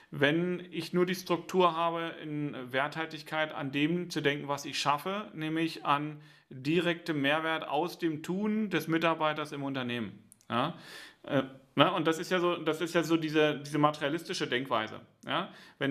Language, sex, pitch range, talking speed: German, male, 140-170 Hz, 160 wpm